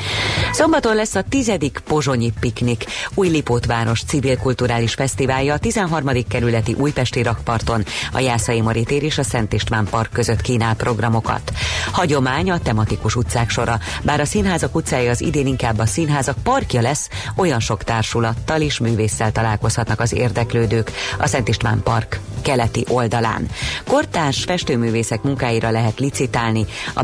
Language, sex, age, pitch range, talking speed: Hungarian, female, 30-49, 115-140 Hz, 140 wpm